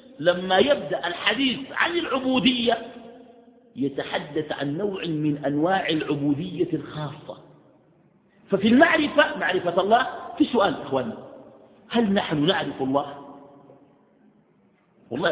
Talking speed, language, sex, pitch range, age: 95 wpm, Arabic, male, 160-260 Hz, 50-69